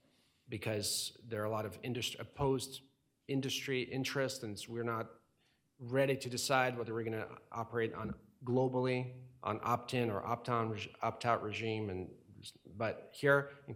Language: English